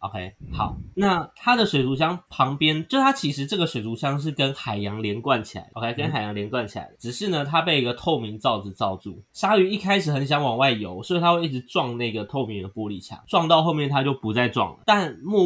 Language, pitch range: Chinese, 105-150 Hz